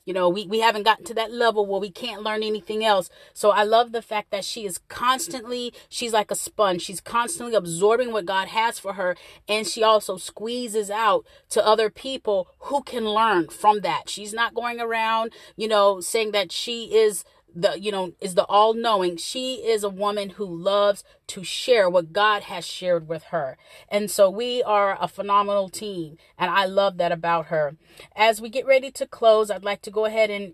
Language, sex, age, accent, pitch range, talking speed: English, female, 30-49, American, 195-230 Hz, 205 wpm